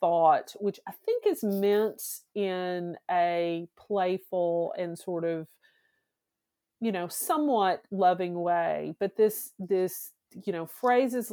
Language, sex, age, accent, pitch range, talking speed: English, female, 40-59, American, 180-220 Hz, 120 wpm